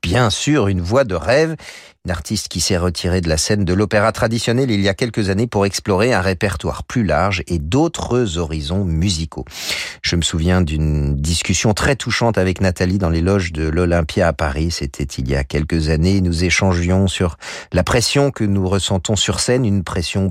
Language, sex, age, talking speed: French, male, 40-59, 195 wpm